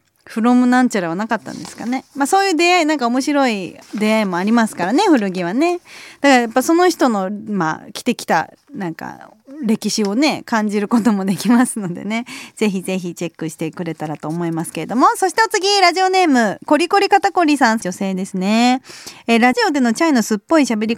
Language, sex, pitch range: Japanese, female, 200-280 Hz